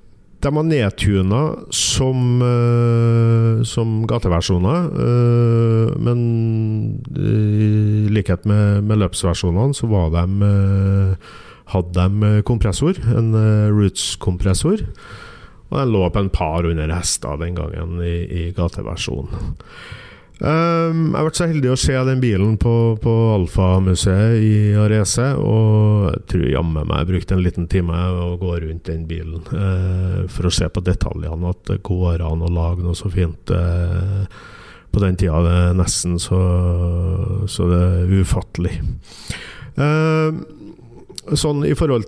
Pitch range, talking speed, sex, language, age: 90-120 Hz, 130 wpm, male, English, 50-69